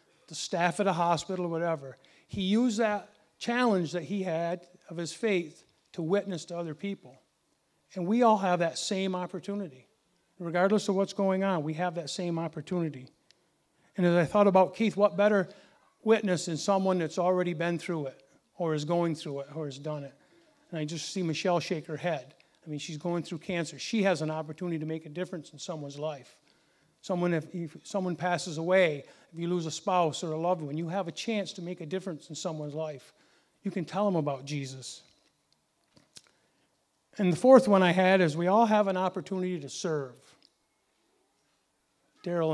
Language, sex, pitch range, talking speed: English, male, 160-195 Hz, 190 wpm